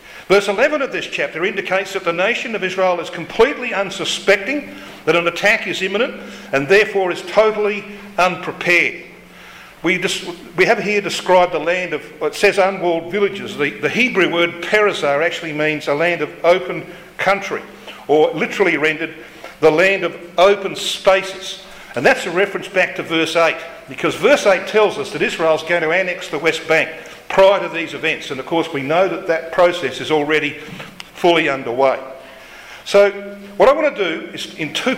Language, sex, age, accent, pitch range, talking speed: English, male, 50-69, Australian, 165-200 Hz, 175 wpm